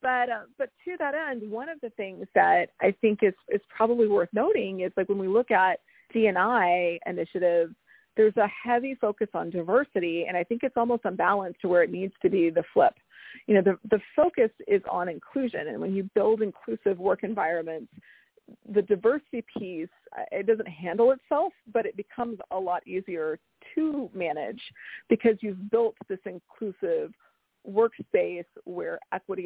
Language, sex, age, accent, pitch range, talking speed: English, female, 40-59, American, 190-250 Hz, 170 wpm